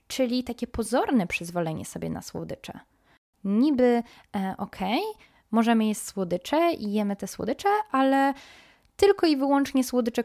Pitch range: 195-245 Hz